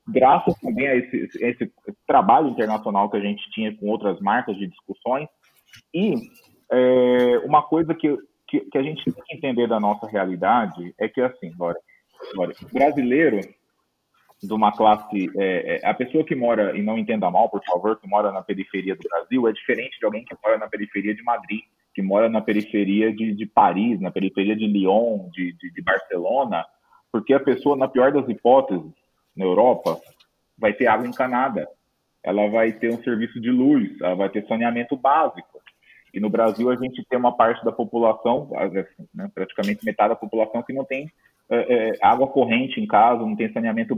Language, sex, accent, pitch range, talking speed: Portuguese, male, Brazilian, 105-145 Hz, 185 wpm